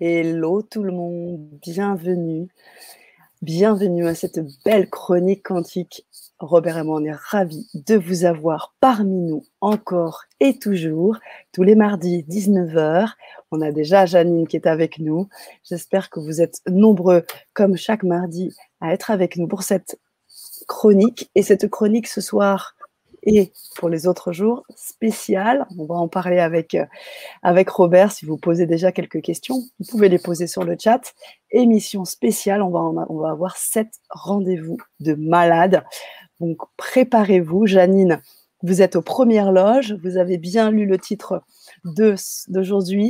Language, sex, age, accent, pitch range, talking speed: French, female, 30-49, French, 170-205 Hz, 155 wpm